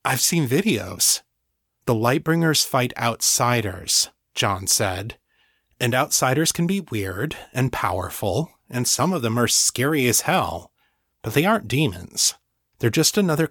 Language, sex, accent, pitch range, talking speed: English, male, American, 110-150 Hz, 140 wpm